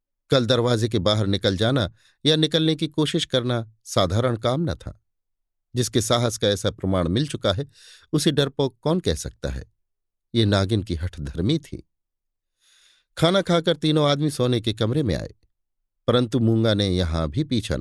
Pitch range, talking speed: 100-135 Hz, 170 wpm